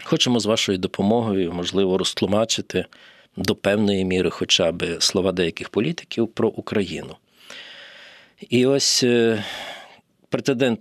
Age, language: 40-59, Ukrainian